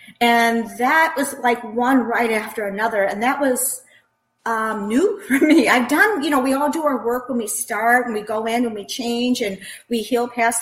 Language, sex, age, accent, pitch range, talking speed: English, female, 40-59, American, 220-270 Hz, 215 wpm